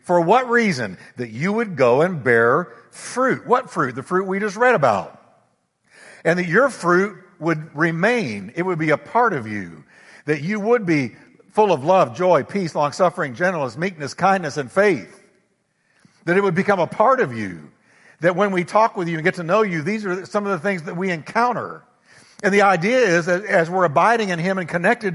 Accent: American